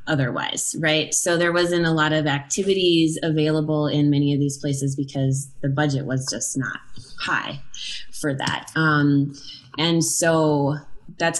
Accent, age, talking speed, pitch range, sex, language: American, 20-39, 145 wpm, 145-175 Hz, female, English